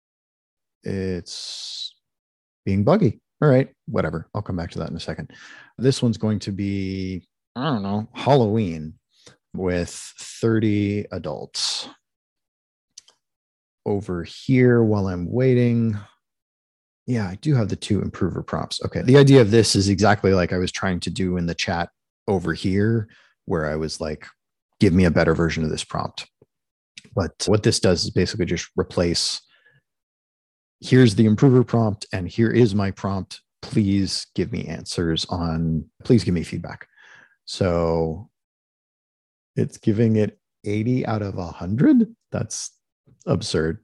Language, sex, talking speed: English, male, 145 wpm